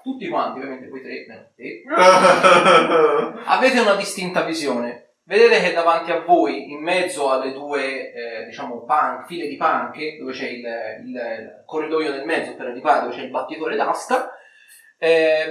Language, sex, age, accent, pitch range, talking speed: Italian, male, 30-49, native, 155-220 Hz, 150 wpm